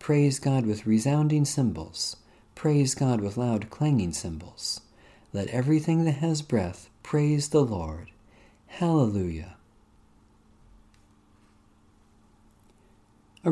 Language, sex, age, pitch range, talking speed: English, male, 50-69, 105-125 Hz, 95 wpm